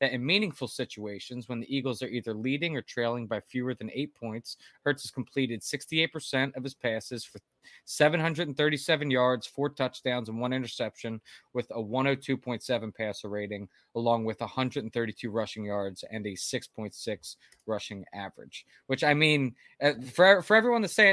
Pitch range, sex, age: 120-155 Hz, male, 20-39